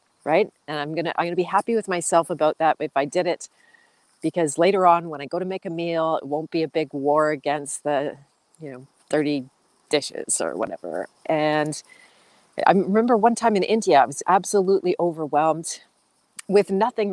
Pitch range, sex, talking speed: 150-190 Hz, female, 195 wpm